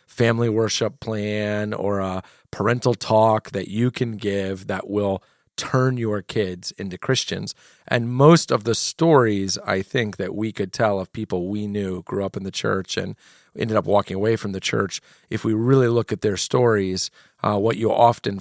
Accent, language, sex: American, English, male